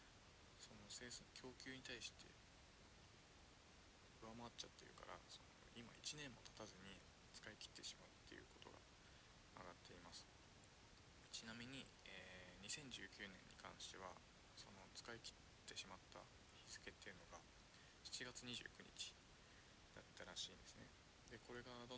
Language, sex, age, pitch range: Japanese, male, 20-39, 95-120 Hz